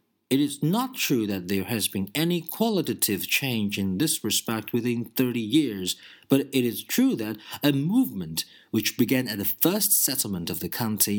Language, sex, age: Chinese, male, 40-59